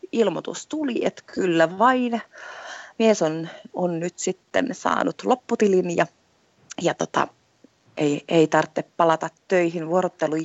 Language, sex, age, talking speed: Finnish, female, 30-49, 120 wpm